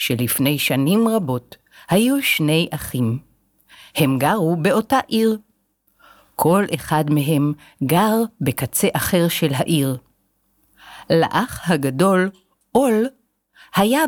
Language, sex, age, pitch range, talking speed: Hebrew, female, 50-69, 135-220 Hz, 95 wpm